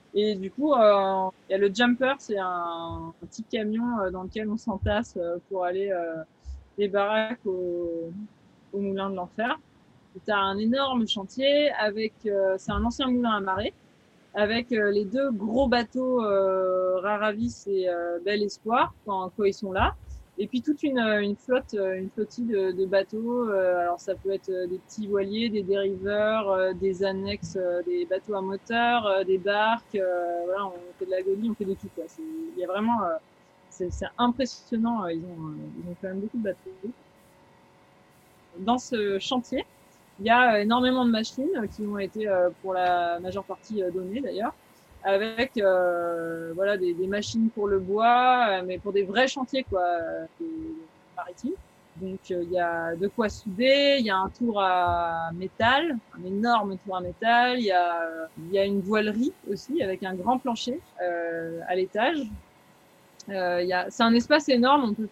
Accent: French